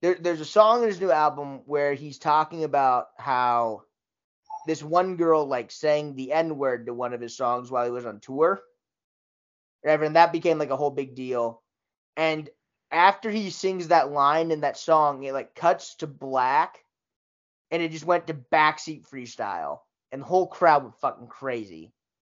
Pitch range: 125-165 Hz